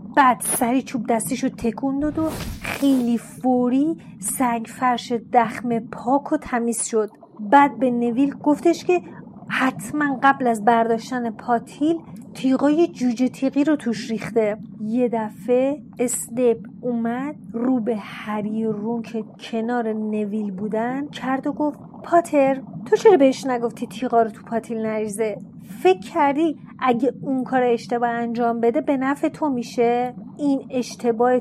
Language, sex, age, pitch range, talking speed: Persian, female, 30-49, 225-270 Hz, 140 wpm